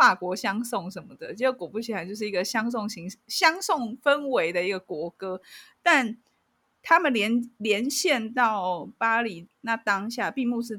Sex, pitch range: female, 195-250 Hz